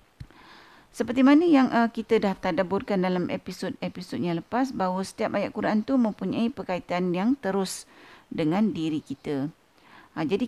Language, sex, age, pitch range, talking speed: Malay, female, 50-69, 175-235 Hz, 135 wpm